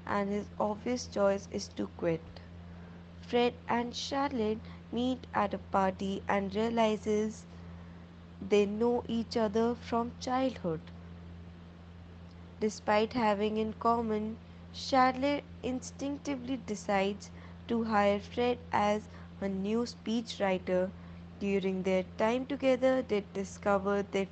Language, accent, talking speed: English, Indian, 105 wpm